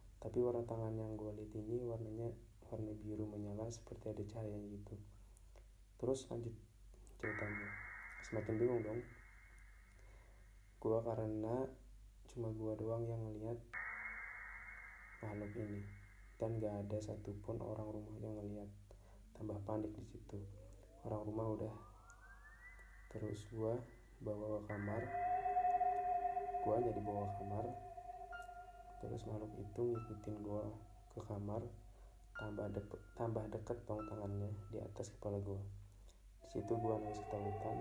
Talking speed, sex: 120 wpm, male